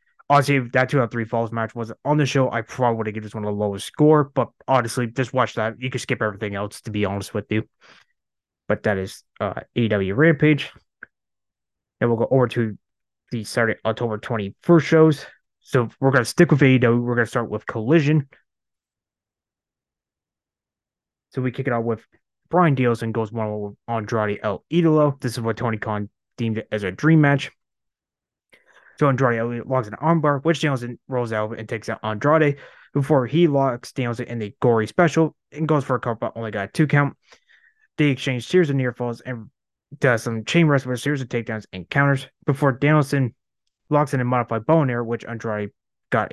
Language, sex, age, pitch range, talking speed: English, male, 20-39, 115-145 Hz, 200 wpm